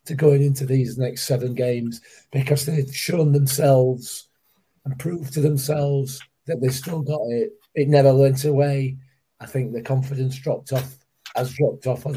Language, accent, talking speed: English, British, 170 wpm